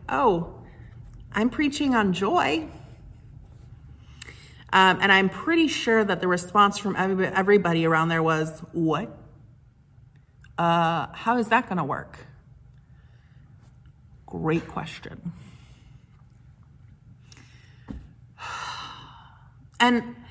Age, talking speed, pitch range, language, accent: 30-49, 85 wpm, 135-200 Hz, English, American